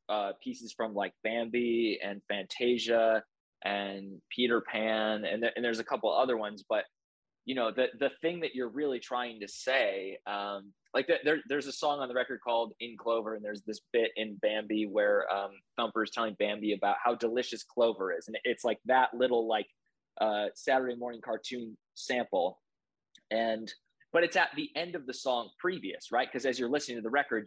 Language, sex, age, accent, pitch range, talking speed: English, male, 20-39, American, 110-145 Hz, 195 wpm